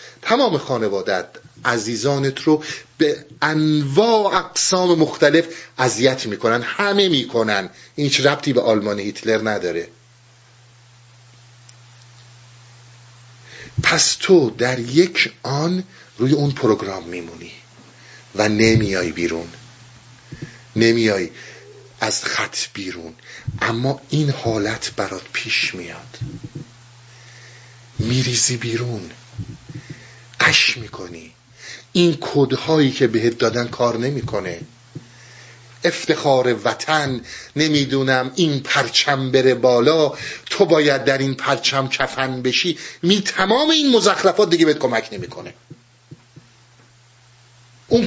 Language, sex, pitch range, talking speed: Persian, male, 120-150 Hz, 90 wpm